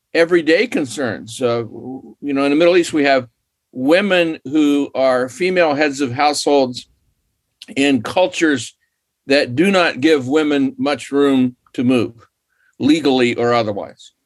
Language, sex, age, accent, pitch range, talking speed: English, male, 50-69, American, 120-160 Hz, 125 wpm